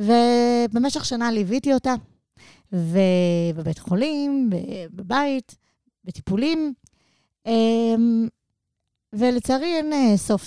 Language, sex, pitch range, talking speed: Hebrew, female, 185-255 Hz, 65 wpm